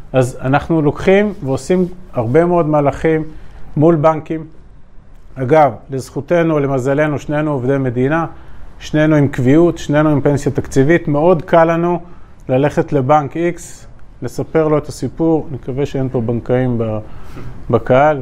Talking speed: 125 wpm